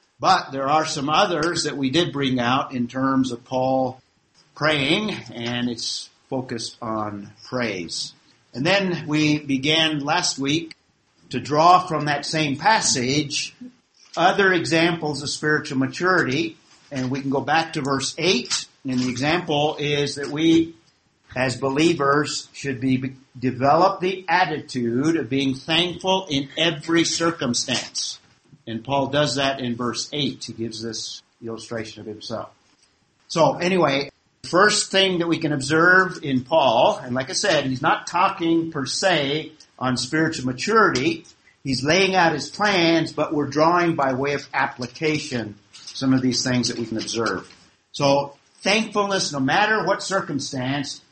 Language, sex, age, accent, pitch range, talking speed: English, male, 50-69, American, 125-165 Hz, 145 wpm